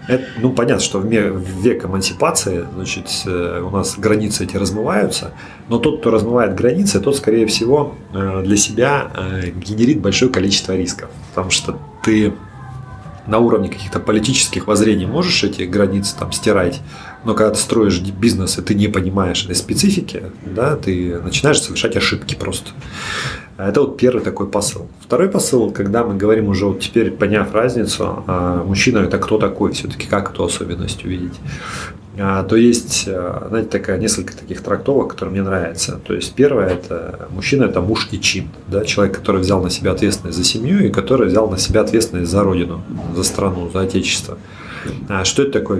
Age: 30-49